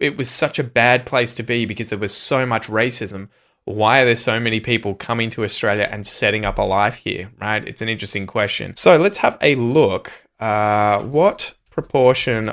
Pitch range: 105-135 Hz